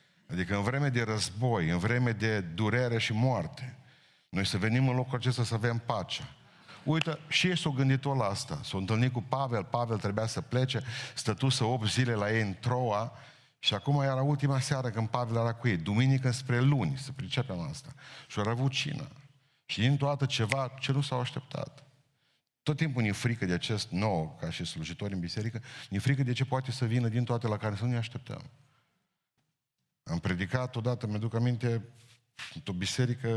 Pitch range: 115-140 Hz